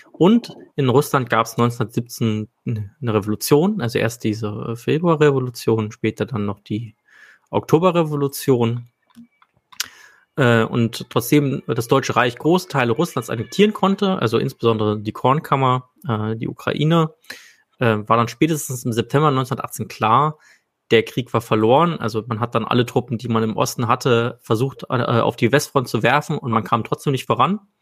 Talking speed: 150 wpm